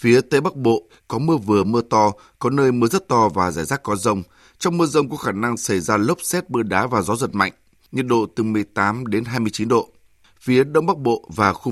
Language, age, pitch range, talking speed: Vietnamese, 20-39, 105-135 Hz, 245 wpm